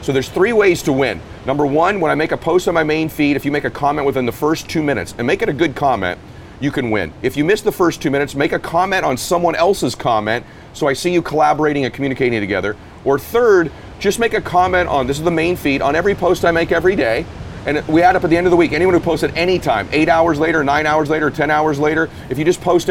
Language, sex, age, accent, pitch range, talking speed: English, male, 40-59, American, 130-160 Hz, 280 wpm